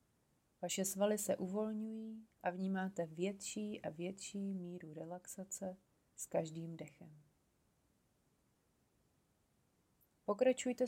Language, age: Czech, 30-49